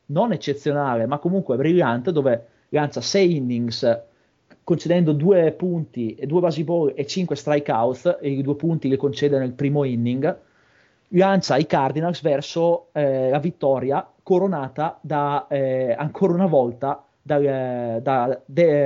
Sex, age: male, 30-49